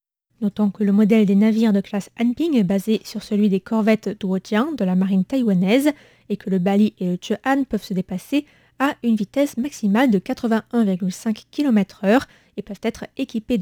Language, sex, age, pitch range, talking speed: French, female, 20-39, 195-245 Hz, 185 wpm